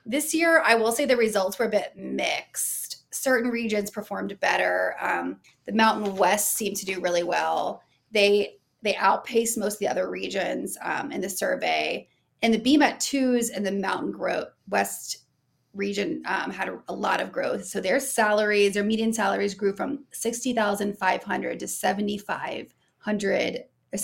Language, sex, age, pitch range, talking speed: English, female, 30-49, 200-235 Hz, 150 wpm